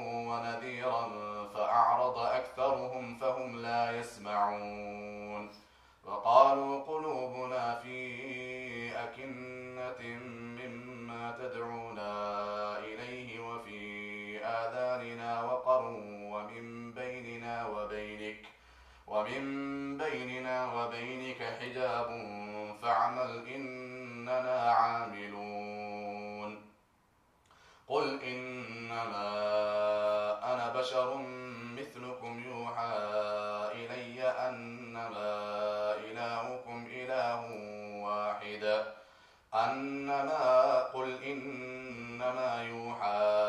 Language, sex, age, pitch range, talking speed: English, male, 30-49, 105-125 Hz, 55 wpm